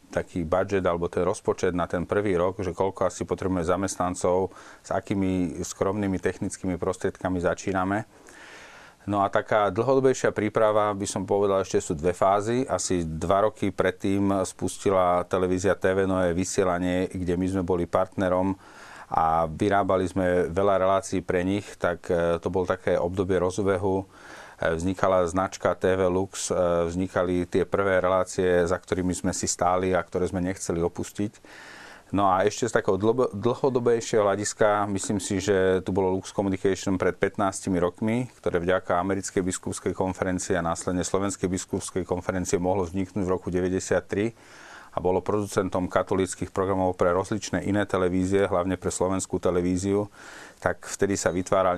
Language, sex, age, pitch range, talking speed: Slovak, male, 40-59, 90-100 Hz, 150 wpm